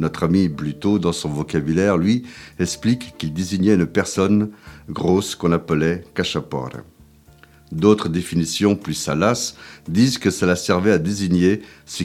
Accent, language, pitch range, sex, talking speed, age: French, French, 80-100 Hz, male, 145 wpm, 50-69